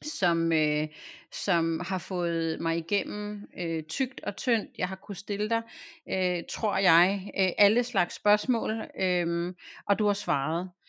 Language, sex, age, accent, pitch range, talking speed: Danish, female, 30-49, native, 165-205 Hz, 125 wpm